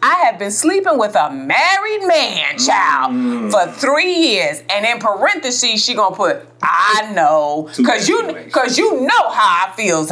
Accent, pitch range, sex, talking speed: American, 185-305 Hz, female, 170 wpm